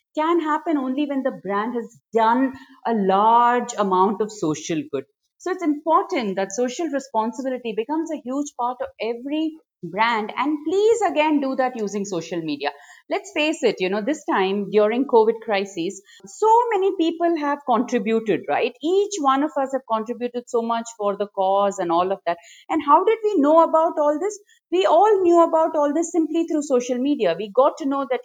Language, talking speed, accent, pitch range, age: English, 190 wpm, Indian, 205-290 Hz, 50-69